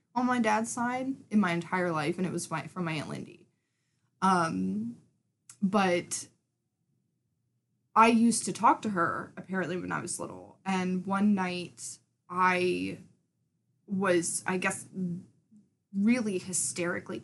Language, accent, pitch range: English, American, 175-225 Hz